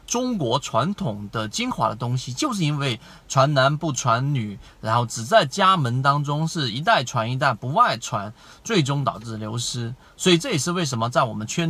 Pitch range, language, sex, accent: 115-165 Hz, Chinese, male, native